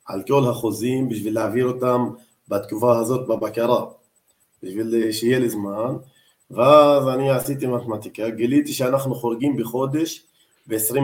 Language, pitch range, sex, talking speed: Hebrew, 115-140 Hz, male, 120 wpm